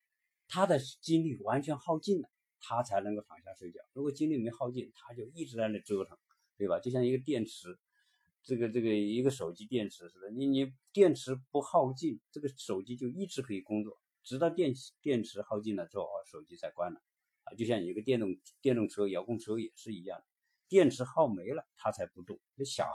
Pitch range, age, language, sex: 105-155 Hz, 50-69, Chinese, male